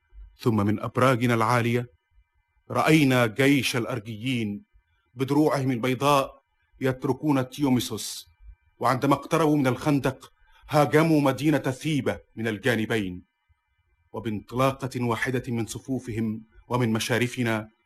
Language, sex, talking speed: Arabic, male, 85 wpm